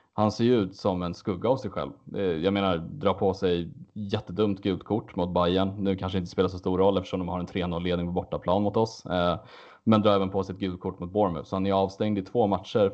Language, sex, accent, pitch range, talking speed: Swedish, male, Norwegian, 90-100 Hz, 235 wpm